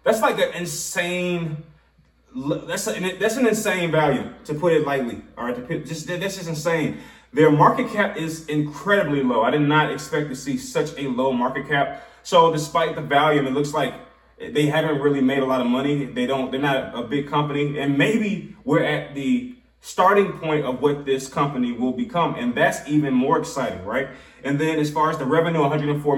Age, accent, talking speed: 20-39, American, 195 wpm